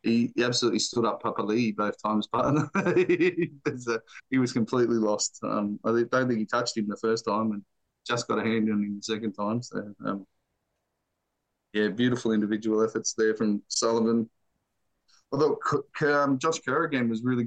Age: 20-39